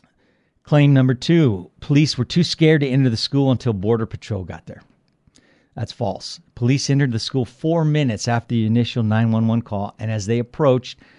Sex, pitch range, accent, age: male, 110-135 Hz, American, 50-69